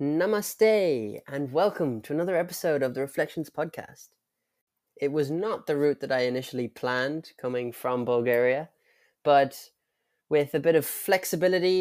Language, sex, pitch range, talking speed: English, male, 125-165 Hz, 140 wpm